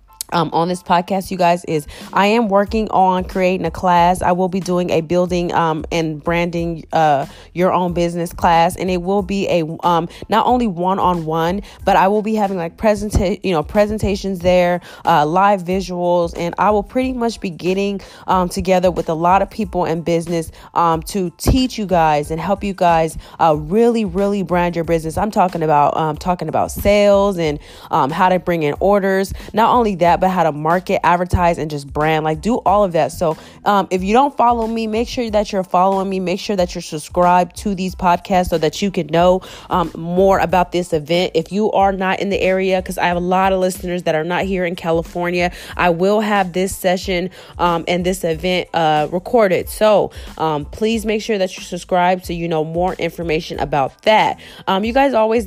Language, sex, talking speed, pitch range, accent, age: English, female, 210 wpm, 170-195 Hz, American, 20-39